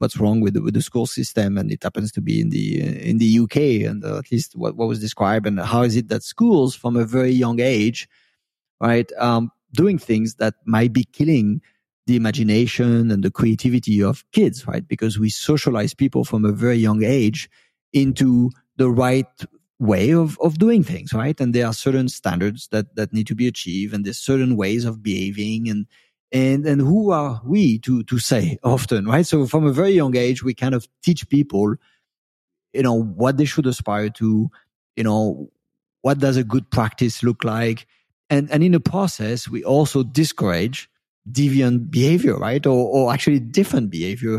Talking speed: 190 wpm